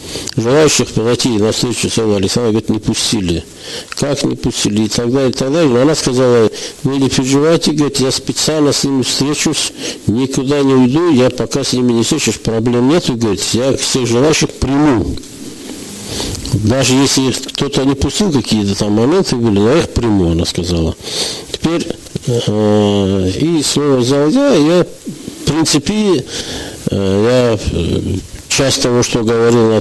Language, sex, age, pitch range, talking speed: Russian, male, 60-79, 100-135 Hz, 150 wpm